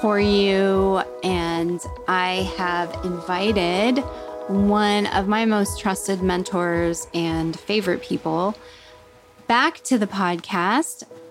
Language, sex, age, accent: English, female, 30-49, American